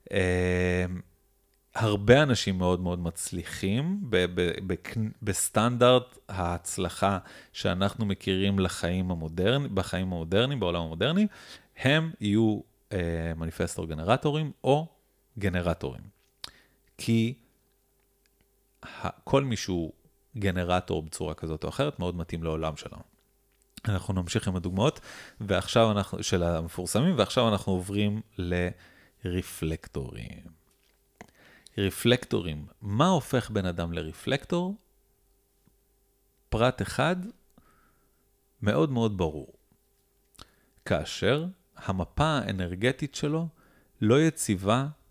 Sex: male